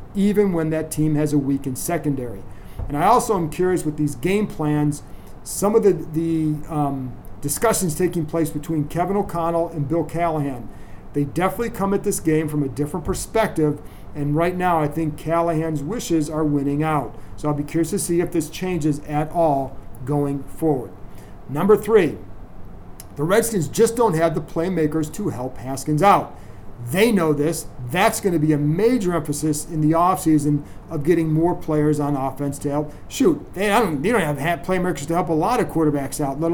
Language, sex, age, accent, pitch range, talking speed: English, male, 40-59, American, 150-180 Hz, 190 wpm